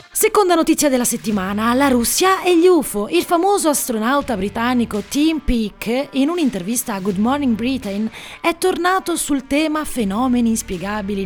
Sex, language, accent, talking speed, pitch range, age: female, Italian, native, 145 wpm, 205-305 Hz, 30-49